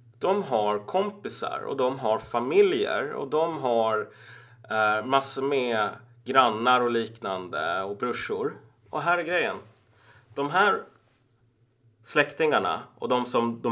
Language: Swedish